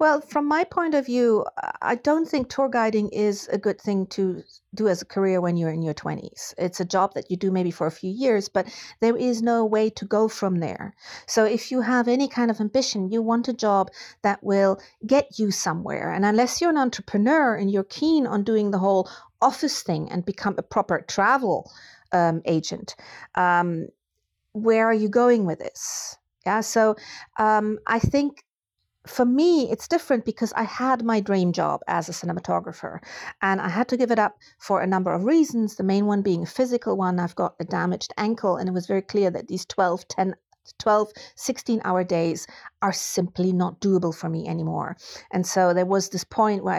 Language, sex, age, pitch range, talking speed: English, female, 50-69, 180-230 Hz, 205 wpm